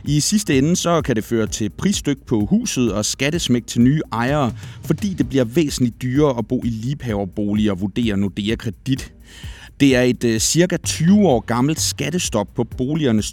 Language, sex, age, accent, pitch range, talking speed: Danish, male, 30-49, native, 105-140 Hz, 180 wpm